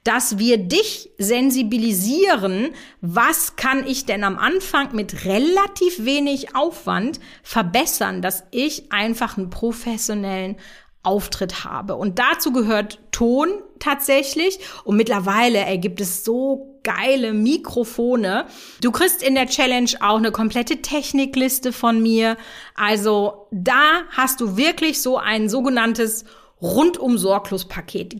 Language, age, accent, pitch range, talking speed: German, 40-59, German, 205-275 Hz, 115 wpm